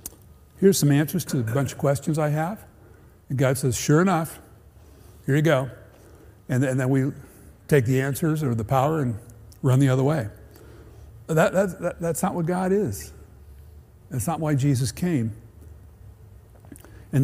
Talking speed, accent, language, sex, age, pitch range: 165 wpm, American, English, male, 60-79, 110-165 Hz